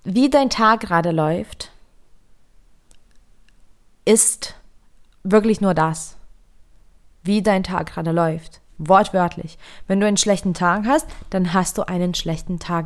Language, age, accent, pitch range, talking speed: German, 20-39, German, 165-200 Hz, 125 wpm